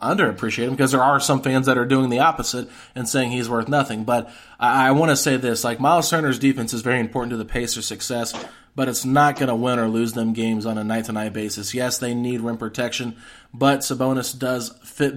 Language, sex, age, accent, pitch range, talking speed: English, male, 20-39, American, 115-140 Hz, 225 wpm